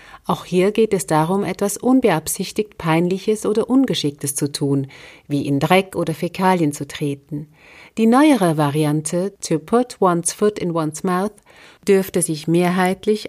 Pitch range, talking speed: 160-220 Hz, 145 wpm